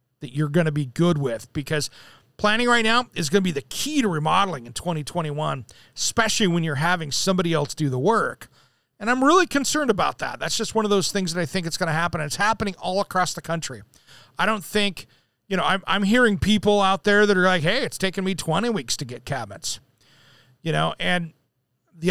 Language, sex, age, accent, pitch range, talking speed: English, male, 40-59, American, 150-205 Hz, 225 wpm